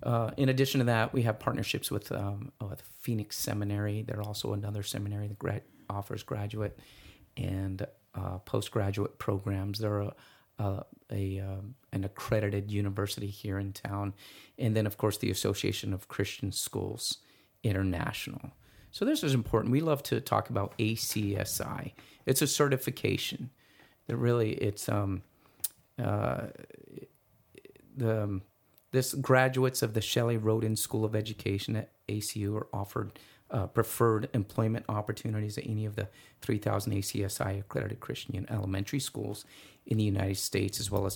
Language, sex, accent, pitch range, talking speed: English, male, American, 100-125 Hz, 145 wpm